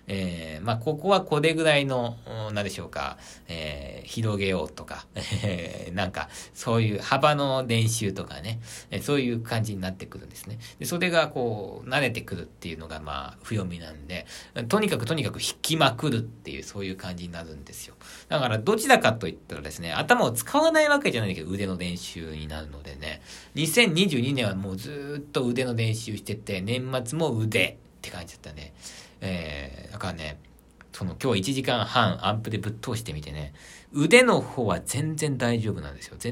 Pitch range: 85-135 Hz